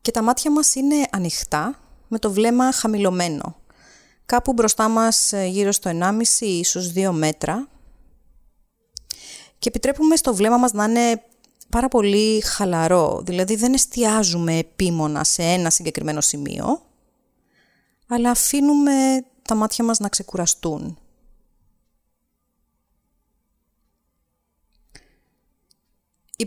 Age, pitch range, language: 30-49, 175-245 Hz, Greek